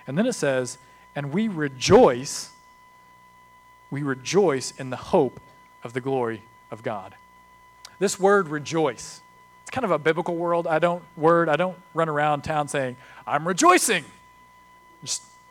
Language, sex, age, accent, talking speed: English, male, 40-59, American, 145 wpm